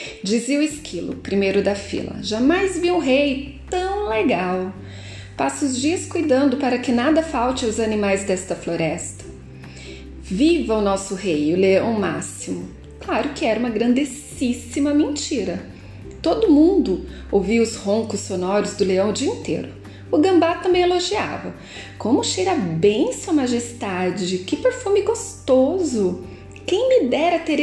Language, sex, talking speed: Portuguese, female, 140 wpm